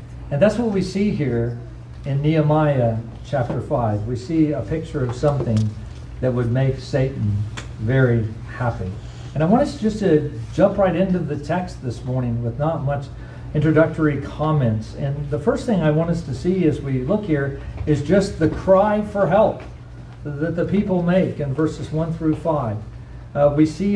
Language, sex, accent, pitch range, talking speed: English, male, American, 125-165 Hz, 175 wpm